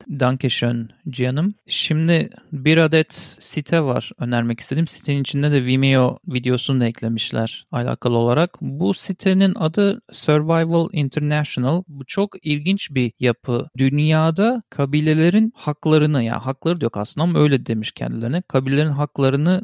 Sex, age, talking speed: male, 40-59, 130 wpm